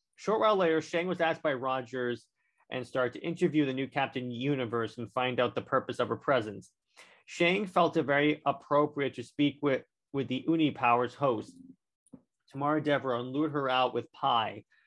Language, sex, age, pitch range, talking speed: English, male, 30-49, 125-155 Hz, 180 wpm